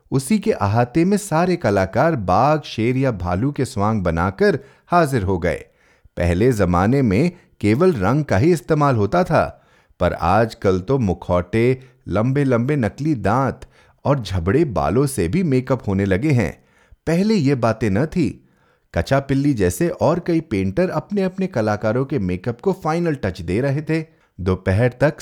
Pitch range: 100-160 Hz